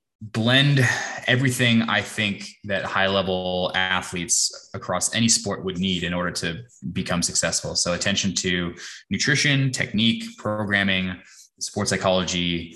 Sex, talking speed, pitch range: male, 120 wpm, 90-115 Hz